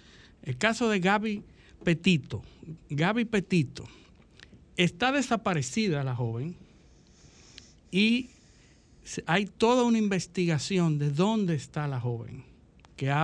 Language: Spanish